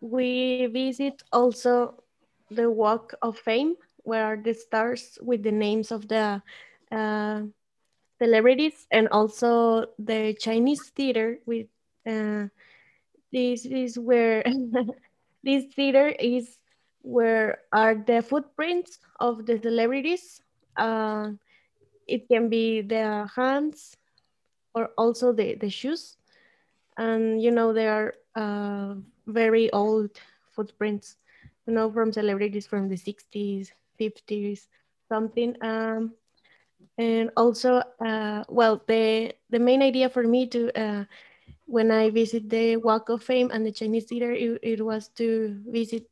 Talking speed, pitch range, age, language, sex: 120 wpm, 220-245 Hz, 20-39, English, female